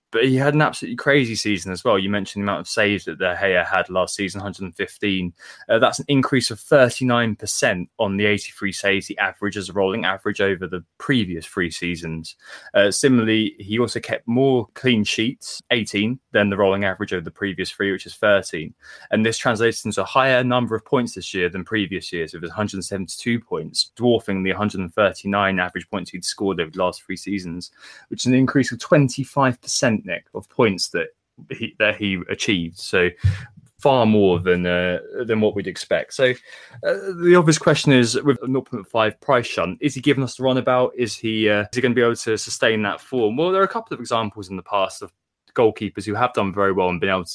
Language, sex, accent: English, male, British